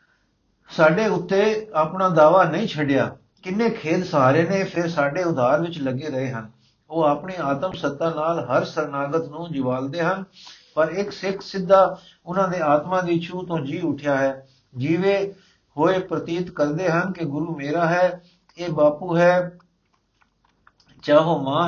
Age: 60-79